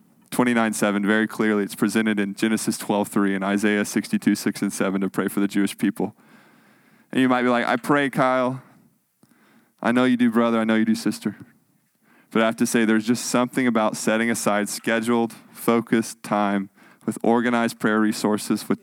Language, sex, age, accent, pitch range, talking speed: English, male, 20-39, American, 105-125 Hz, 185 wpm